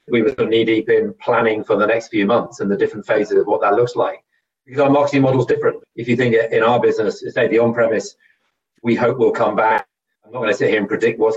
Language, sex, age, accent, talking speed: English, male, 30-49, British, 270 wpm